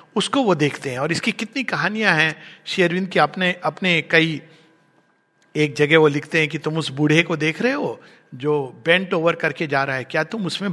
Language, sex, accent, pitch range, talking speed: Hindi, male, native, 155-205 Hz, 215 wpm